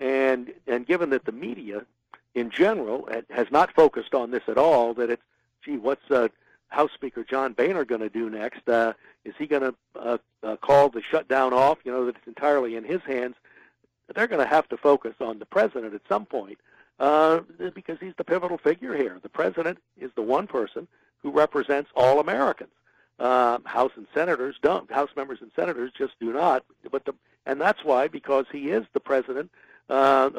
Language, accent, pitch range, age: English, American, 120-160 Hz, 60-79